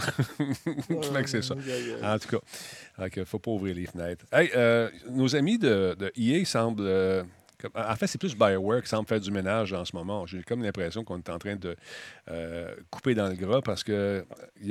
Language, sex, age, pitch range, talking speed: French, male, 40-59, 95-120 Hz, 200 wpm